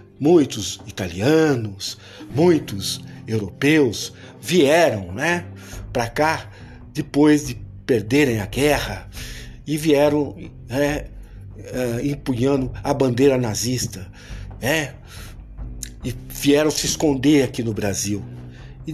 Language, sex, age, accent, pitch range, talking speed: Portuguese, male, 60-79, Brazilian, 120-170 Hz, 90 wpm